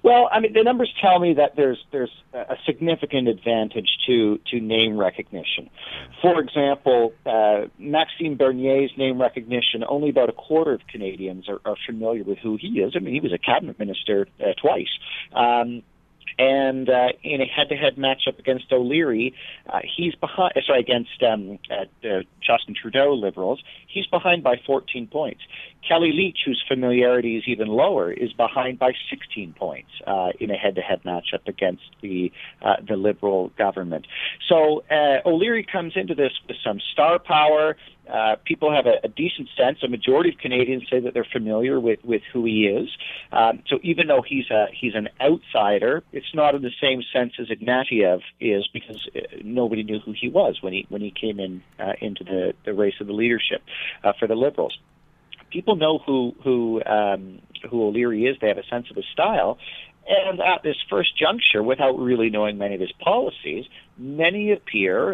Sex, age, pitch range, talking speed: male, 40-59, 110-155 Hz, 180 wpm